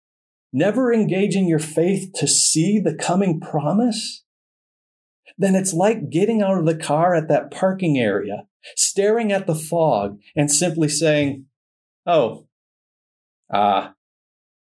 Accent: American